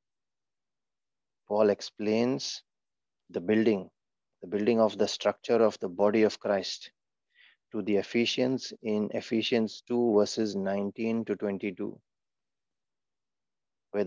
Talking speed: 105 wpm